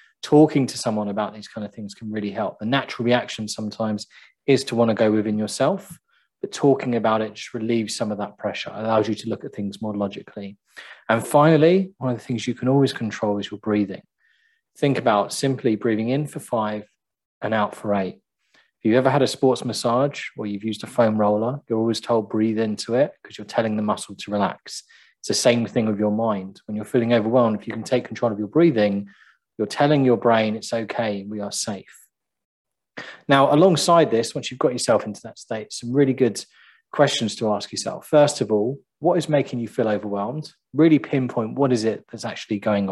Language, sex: English, male